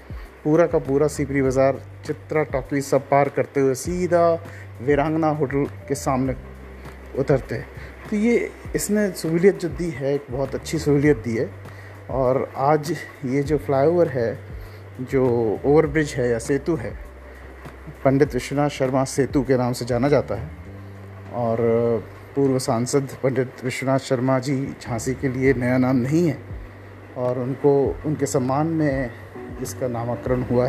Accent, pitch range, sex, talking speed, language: native, 115-145 Hz, male, 145 wpm, Hindi